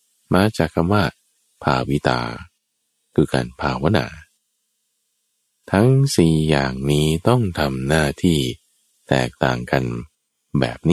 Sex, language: male, Thai